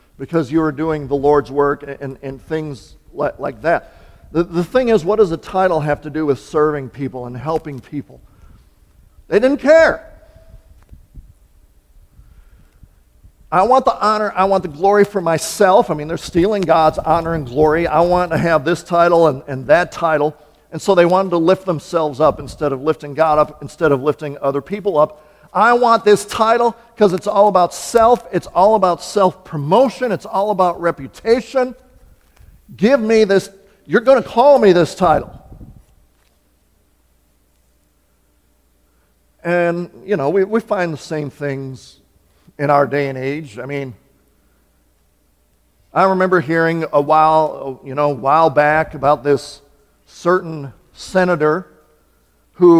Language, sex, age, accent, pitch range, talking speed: English, male, 50-69, American, 135-185 Hz, 155 wpm